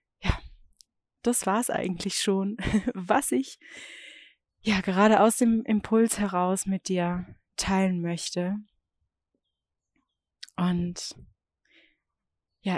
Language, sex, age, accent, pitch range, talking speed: German, female, 30-49, German, 185-225 Hz, 90 wpm